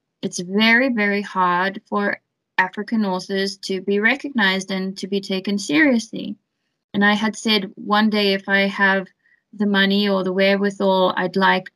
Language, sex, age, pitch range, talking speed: English, female, 20-39, 195-215 Hz, 160 wpm